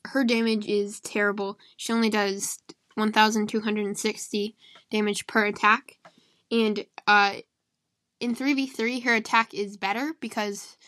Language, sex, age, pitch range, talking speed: English, female, 10-29, 205-240 Hz, 110 wpm